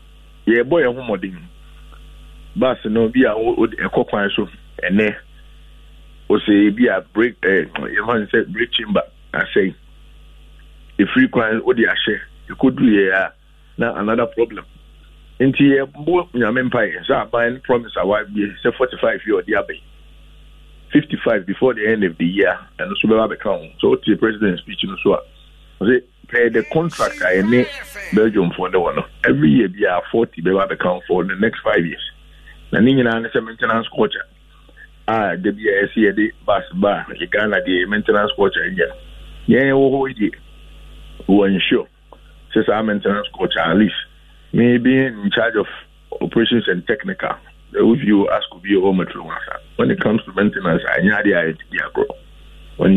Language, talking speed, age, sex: English, 160 wpm, 50-69, male